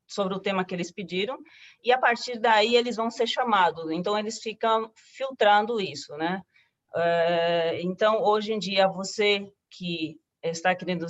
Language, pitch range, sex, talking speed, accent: Portuguese, 180-215 Hz, female, 150 wpm, Brazilian